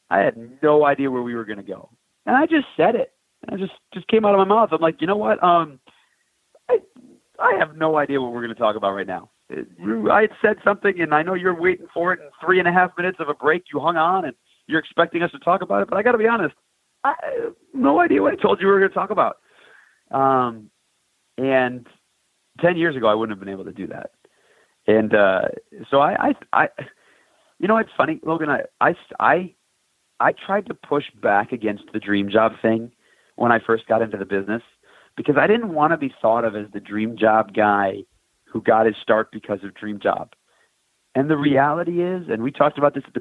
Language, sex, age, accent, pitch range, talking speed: English, male, 40-59, American, 110-175 Hz, 240 wpm